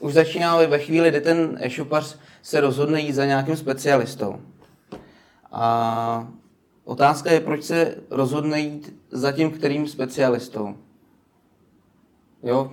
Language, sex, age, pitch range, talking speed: Czech, male, 30-49, 130-150 Hz, 120 wpm